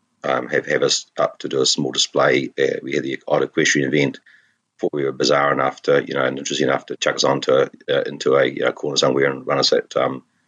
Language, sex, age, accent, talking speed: English, male, 30-49, Australian, 250 wpm